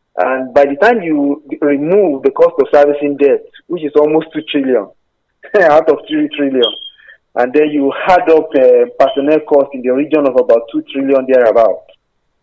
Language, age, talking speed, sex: English, 40-59, 175 wpm, male